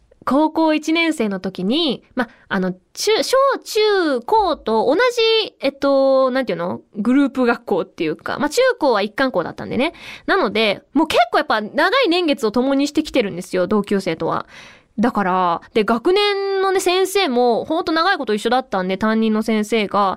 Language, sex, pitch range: Japanese, female, 190-300 Hz